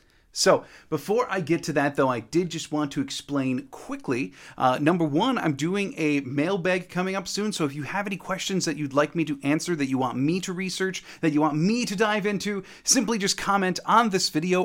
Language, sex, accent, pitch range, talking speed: English, male, American, 135-175 Hz, 225 wpm